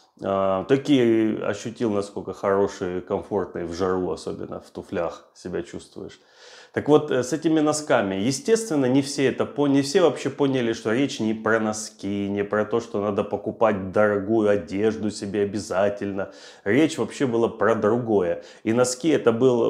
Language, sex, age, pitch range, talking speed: Russian, male, 30-49, 100-125 Hz, 150 wpm